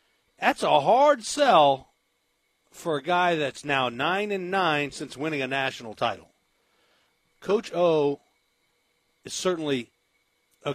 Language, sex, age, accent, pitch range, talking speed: English, male, 40-59, American, 135-160 Hz, 130 wpm